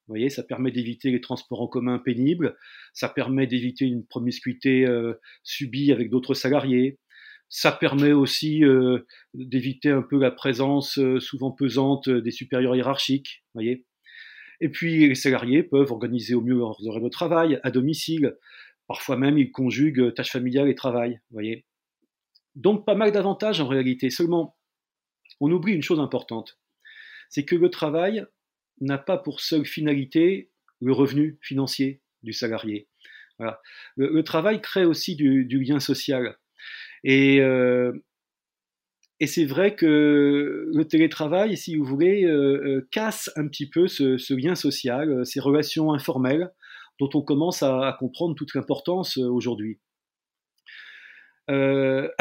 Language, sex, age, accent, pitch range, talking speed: French, male, 40-59, French, 130-165 Hz, 145 wpm